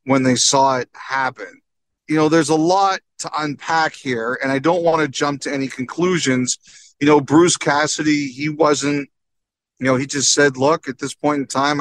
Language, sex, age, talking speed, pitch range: English, male, 40-59, 200 wpm, 130-160 Hz